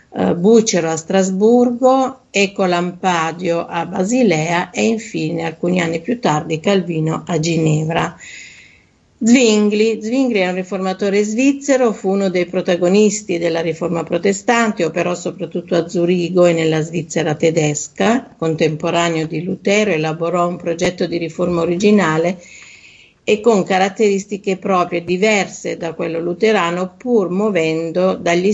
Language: Italian